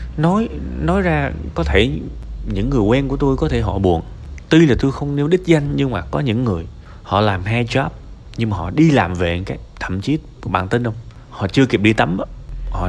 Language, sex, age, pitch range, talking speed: Vietnamese, male, 20-39, 95-145 Hz, 230 wpm